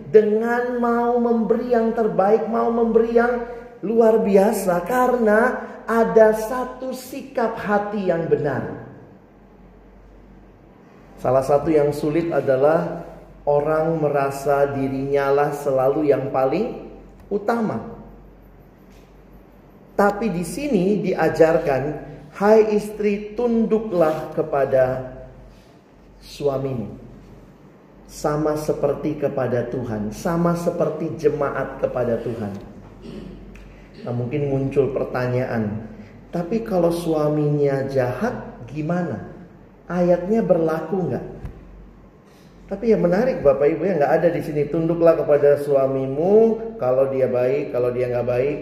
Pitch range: 135-215 Hz